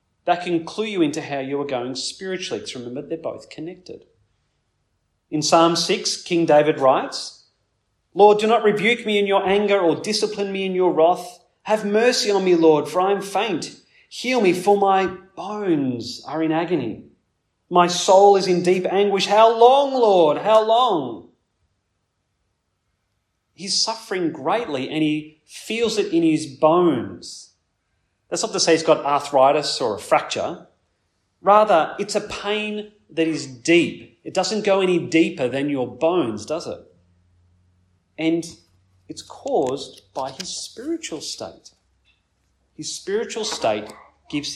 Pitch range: 135-195 Hz